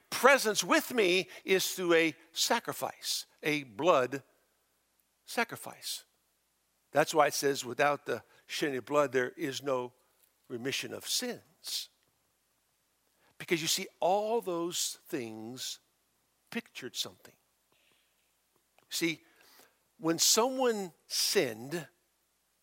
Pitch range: 130-200 Hz